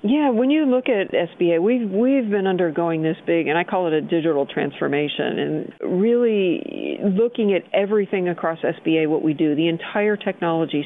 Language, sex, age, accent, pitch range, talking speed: English, female, 50-69, American, 165-195 Hz, 175 wpm